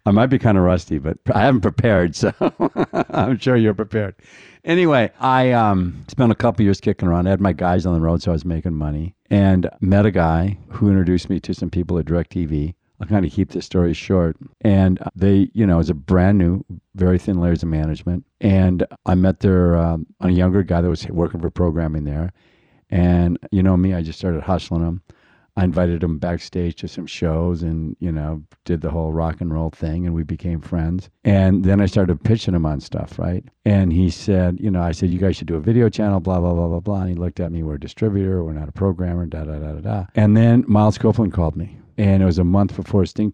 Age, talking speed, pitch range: 50-69, 240 wpm, 85-105 Hz